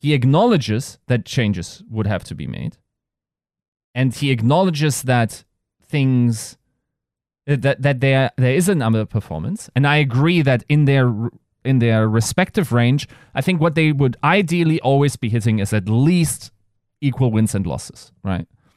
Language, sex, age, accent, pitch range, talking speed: English, male, 30-49, German, 120-155 Hz, 155 wpm